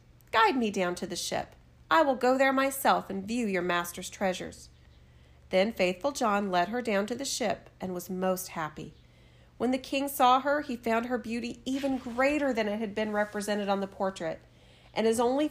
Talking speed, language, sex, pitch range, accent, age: 195 wpm, English, female, 180-255 Hz, American, 40-59